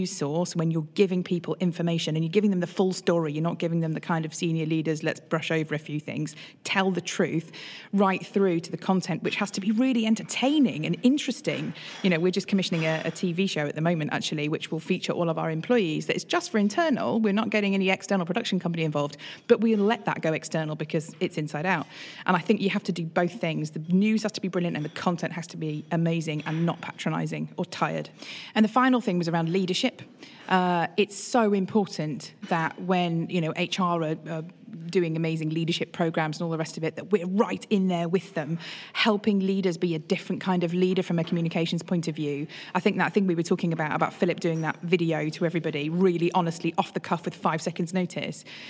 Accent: British